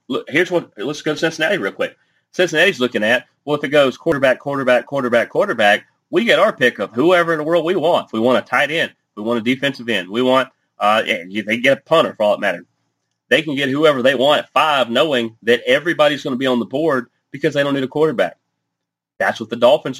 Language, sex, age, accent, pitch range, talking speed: English, male, 30-49, American, 120-155 Hz, 245 wpm